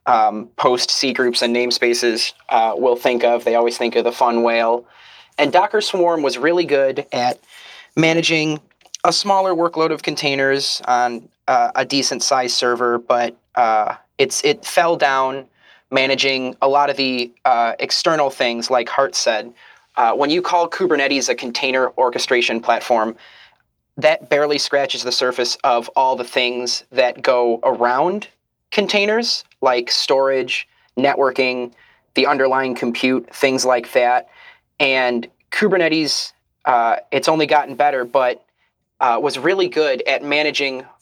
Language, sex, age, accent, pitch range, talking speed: English, male, 30-49, American, 120-155 Hz, 140 wpm